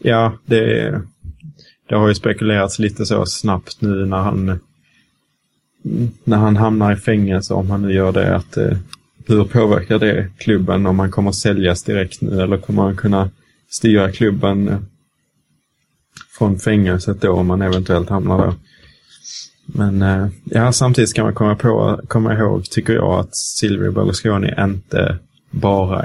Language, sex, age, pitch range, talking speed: Swedish, male, 20-39, 90-105 Hz, 150 wpm